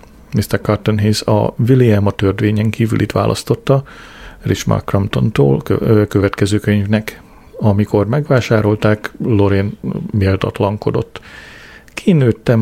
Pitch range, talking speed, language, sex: 100-115 Hz, 75 wpm, Hungarian, male